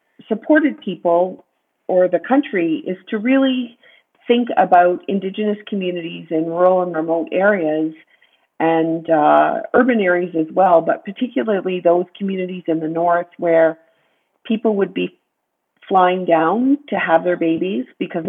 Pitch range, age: 165-205 Hz, 40-59